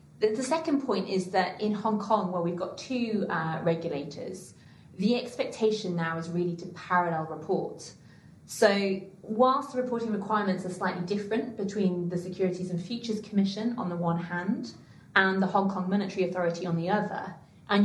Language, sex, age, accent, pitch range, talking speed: English, female, 30-49, British, 170-210 Hz, 170 wpm